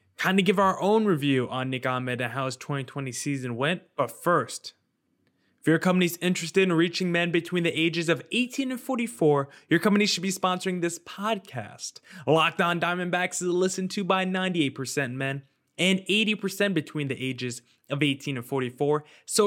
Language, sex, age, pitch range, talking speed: English, male, 20-39, 135-185 Hz, 175 wpm